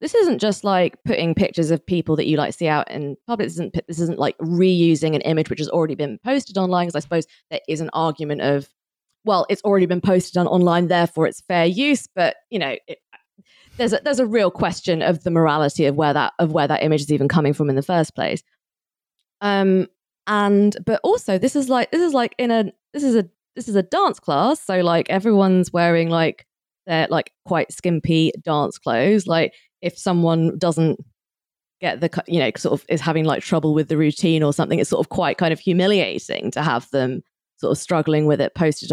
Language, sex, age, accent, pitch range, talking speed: English, female, 20-39, British, 160-220 Hz, 215 wpm